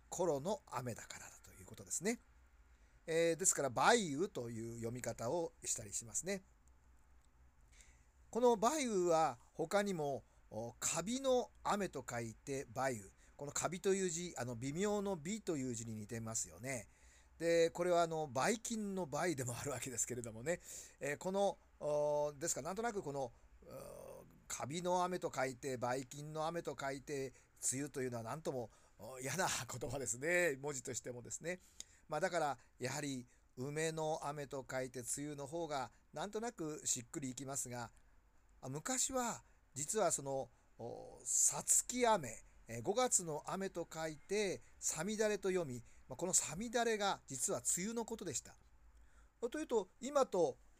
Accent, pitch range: native, 120-180 Hz